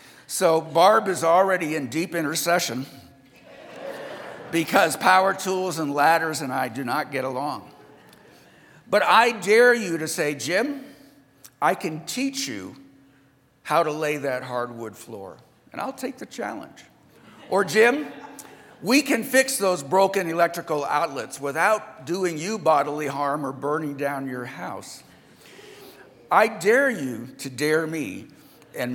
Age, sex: 60-79, male